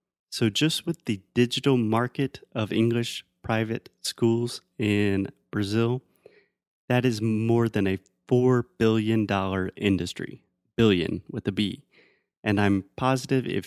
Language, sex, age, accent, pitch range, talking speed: Portuguese, male, 30-49, American, 100-130 Hz, 125 wpm